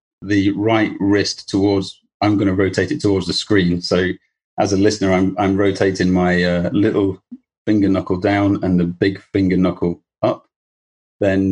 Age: 30-49